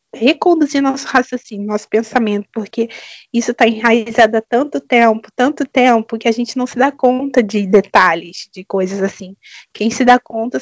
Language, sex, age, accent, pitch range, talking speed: Portuguese, female, 20-39, Brazilian, 225-270 Hz, 170 wpm